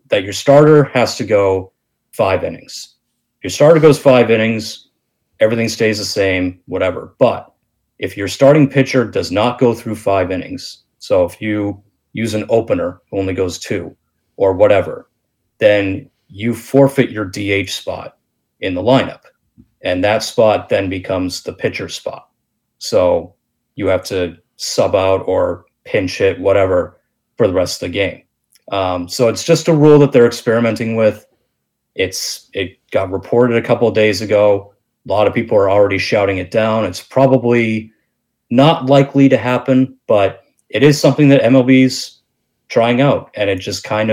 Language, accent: English, American